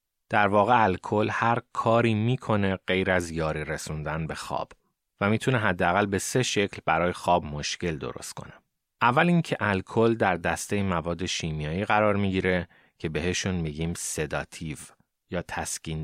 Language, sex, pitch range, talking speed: Persian, male, 85-110 Hz, 140 wpm